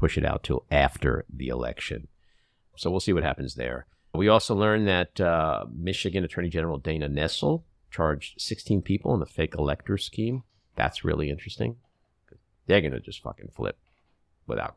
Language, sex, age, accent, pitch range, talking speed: English, male, 50-69, American, 80-105 Hz, 165 wpm